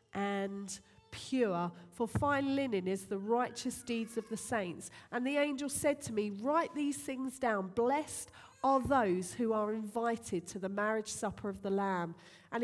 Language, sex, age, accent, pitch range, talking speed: English, female, 40-59, British, 200-255 Hz, 170 wpm